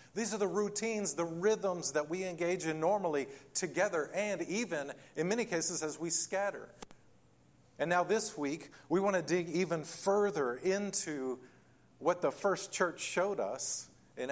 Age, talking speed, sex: 40-59, 160 wpm, male